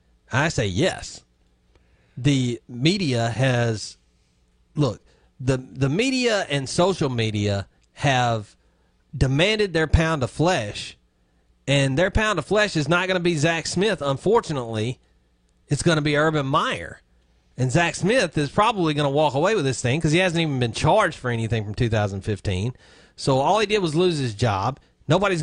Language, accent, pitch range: English, American, 105-150 Hz